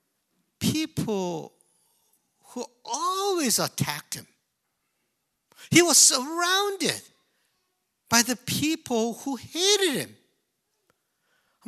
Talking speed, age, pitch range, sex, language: 75 wpm, 60-79, 205-300 Hz, male, English